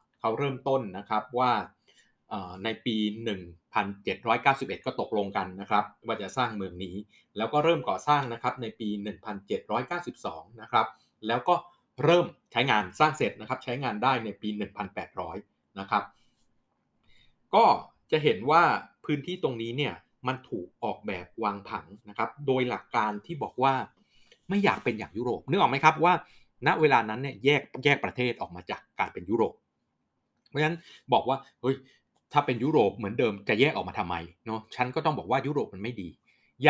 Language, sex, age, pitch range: Thai, male, 20-39, 105-140 Hz